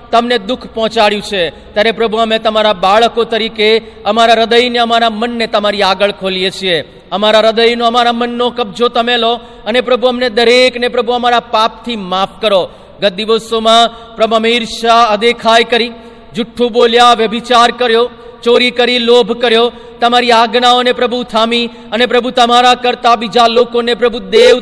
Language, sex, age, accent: Gujarati, male, 40-59, native